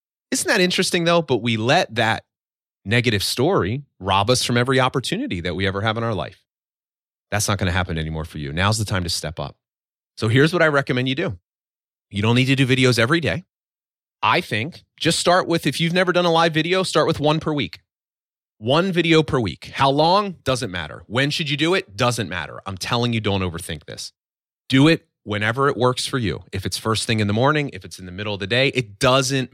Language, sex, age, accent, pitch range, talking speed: English, male, 30-49, American, 100-135 Hz, 230 wpm